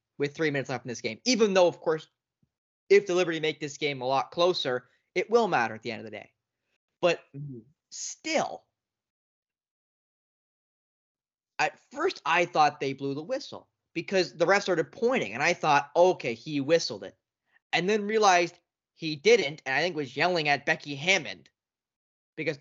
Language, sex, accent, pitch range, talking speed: English, male, American, 140-195 Hz, 175 wpm